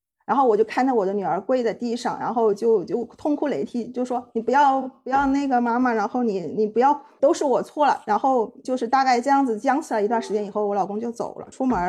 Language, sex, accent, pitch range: Chinese, female, native, 210-265 Hz